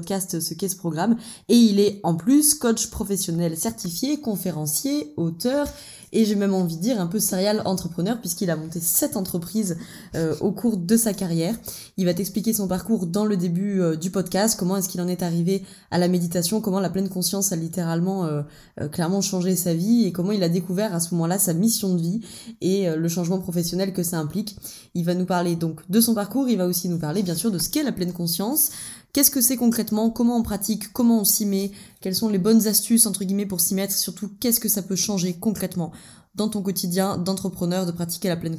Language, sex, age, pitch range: French, female, 20-39, 175-220 Hz